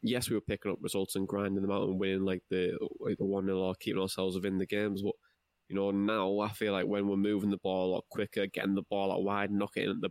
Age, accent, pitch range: 20-39, British, 95-110 Hz